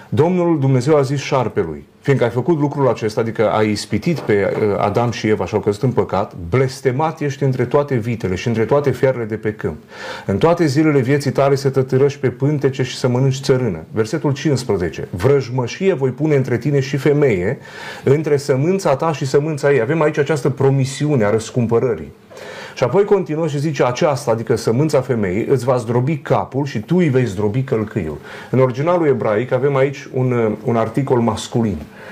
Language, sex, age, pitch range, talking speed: Romanian, male, 30-49, 120-145 Hz, 180 wpm